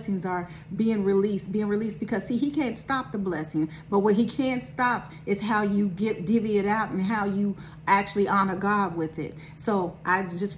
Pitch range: 190-235 Hz